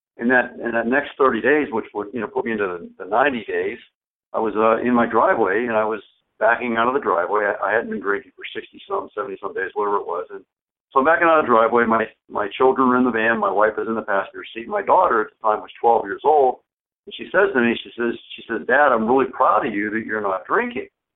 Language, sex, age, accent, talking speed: English, male, 60-79, American, 265 wpm